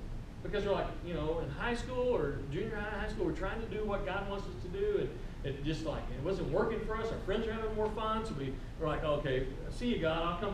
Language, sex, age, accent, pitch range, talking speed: English, male, 40-59, American, 155-215 Hz, 275 wpm